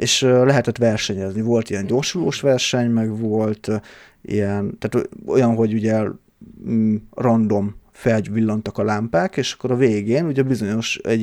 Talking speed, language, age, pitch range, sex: 135 wpm, Hungarian, 30-49, 105-120 Hz, male